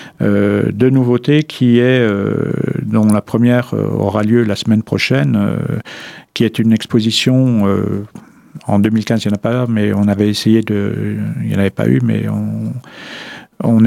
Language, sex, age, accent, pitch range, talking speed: French, male, 50-69, French, 105-120 Hz, 175 wpm